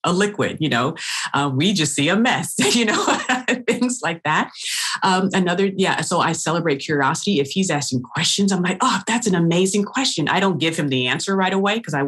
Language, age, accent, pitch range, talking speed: English, 30-49, American, 135-175 Hz, 215 wpm